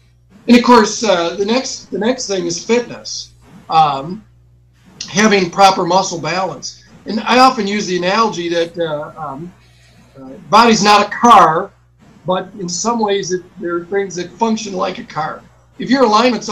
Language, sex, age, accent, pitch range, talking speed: English, male, 50-69, American, 170-210 Hz, 165 wpm